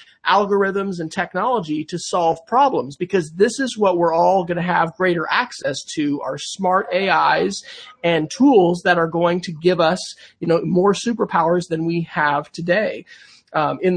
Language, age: English, 40-59